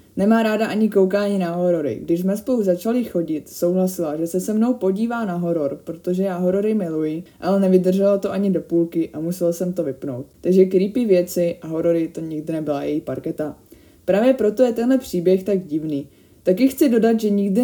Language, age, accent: Czech, 20-39, native